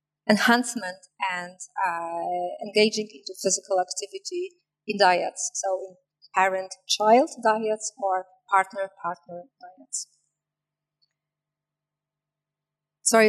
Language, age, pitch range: Polish, 30-49, 185-230 Hz